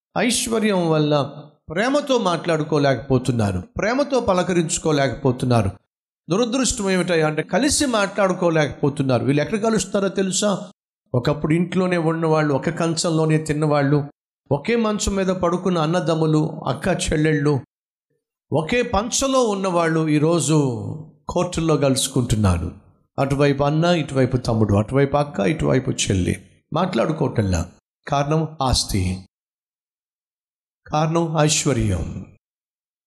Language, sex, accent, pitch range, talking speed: Telugu, male, native, 135-180 Hz, 85 wpm